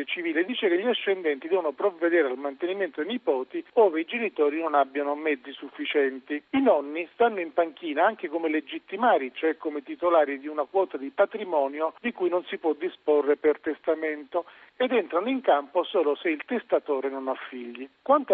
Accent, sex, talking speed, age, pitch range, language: native, male, 175 wpm, 40-59, 150-245 Hz, Italian